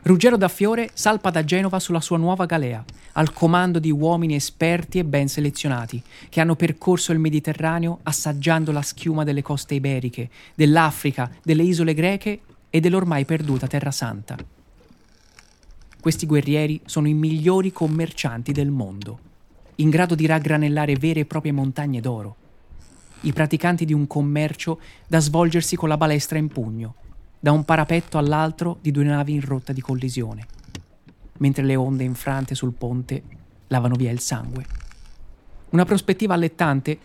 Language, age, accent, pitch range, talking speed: Italian, 30-49, native, 130-170 Hz, 145 wpm